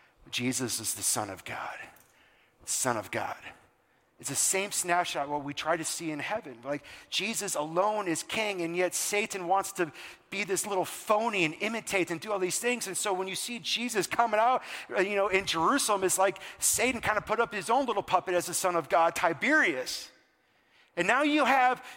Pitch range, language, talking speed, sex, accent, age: 160-210 Hz, English, 200 wpm, male, American, 40-59